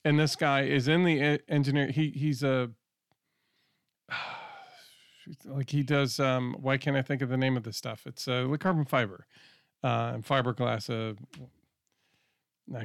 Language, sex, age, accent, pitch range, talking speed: English, male, 40-59, American, 125-145 Hz, 160 wpm